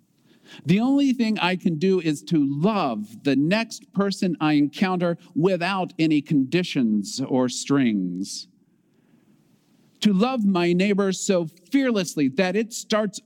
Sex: male